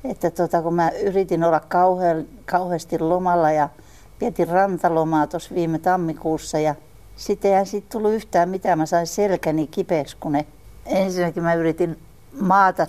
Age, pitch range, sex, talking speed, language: 60-79, 155-195 Hz, female, 150 wpm, Finnish